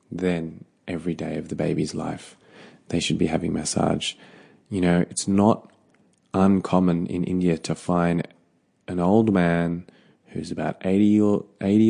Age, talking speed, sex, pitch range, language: 20-39, 135 wpm, male, 85-110 Hz, English